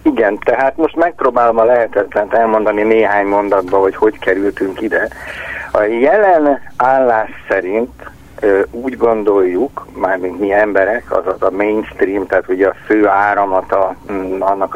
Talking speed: 120 wpm